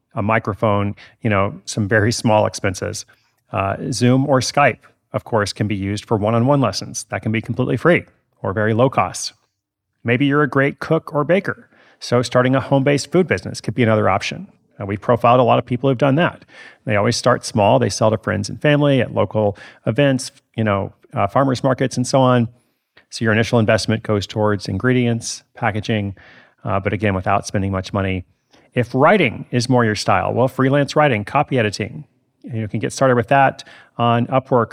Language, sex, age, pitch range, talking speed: English, male, 30-49, 105-130 Hz, 190 wpm